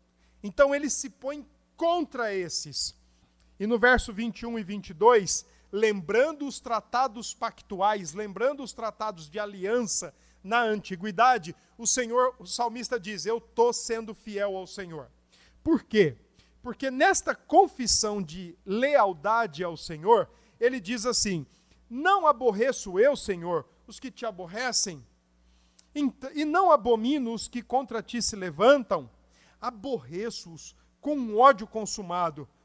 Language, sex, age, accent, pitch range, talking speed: Portuguese, male, 50-69, Brazilian, 195-260 Hz, 120 wpm